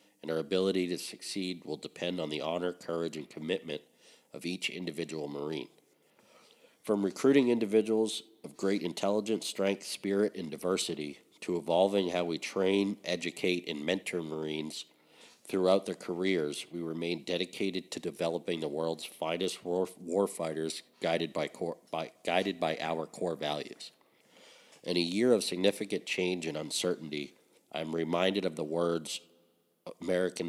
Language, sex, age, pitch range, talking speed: English, male, 50-69, 80-95 Hz, 135 wpm